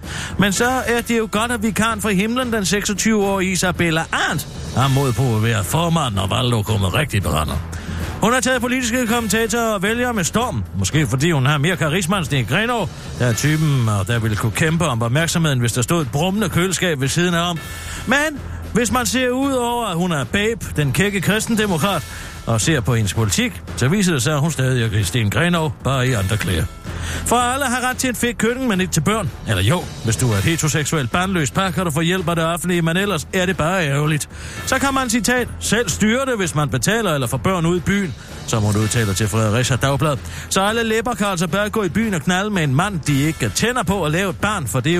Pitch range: 120-195 Hz